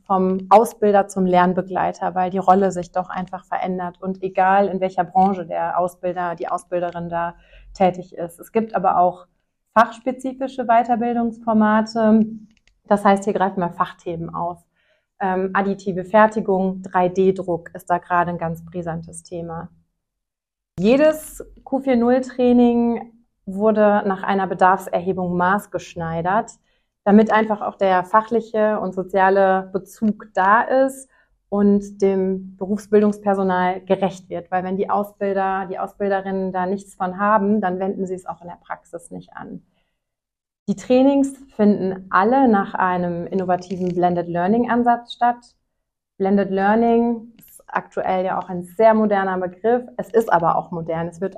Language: German